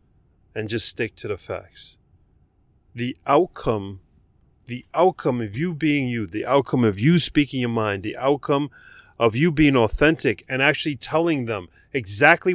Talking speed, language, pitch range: 155 wpm, English, 100-140 Hz